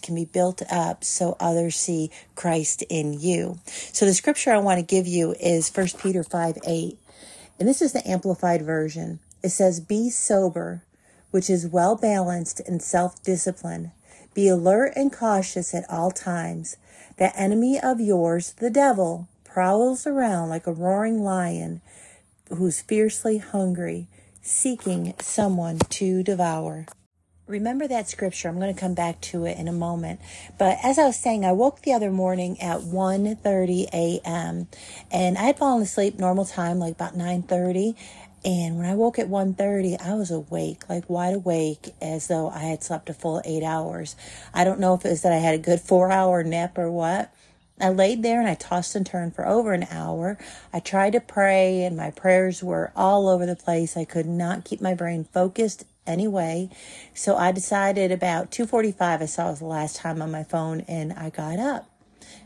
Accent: American